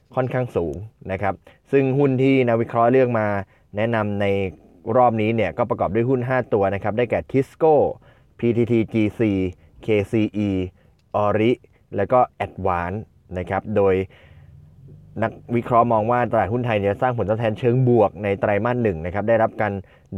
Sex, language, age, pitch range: male, Thai, 20-39, 95-120 Hz